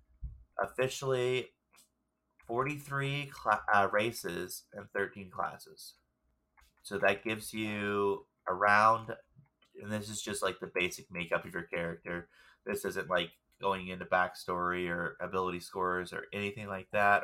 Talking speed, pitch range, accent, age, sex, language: 125 wpm, 90-110 Hz, American, 20-39, male, English